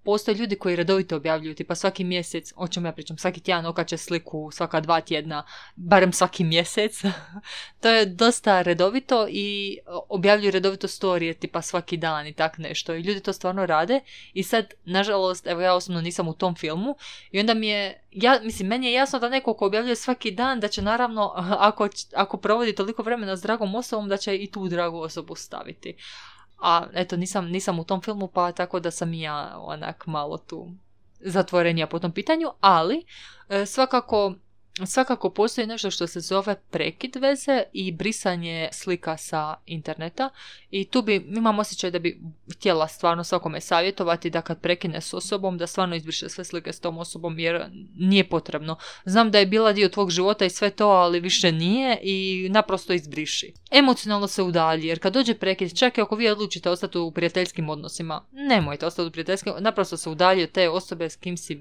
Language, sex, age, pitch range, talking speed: Croatian, female, 20-39, 170-205 Hz, 185 wpm